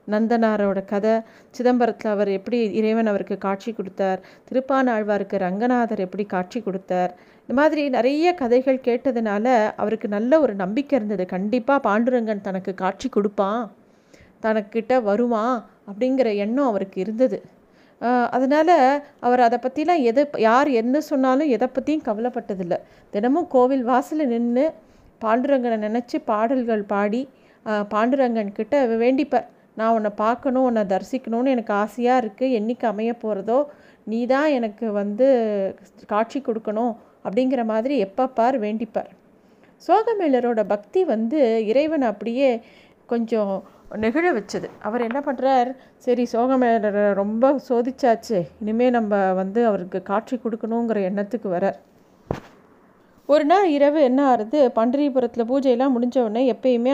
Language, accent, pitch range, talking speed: Tamil, native, 215-260 Hz, 115 wpm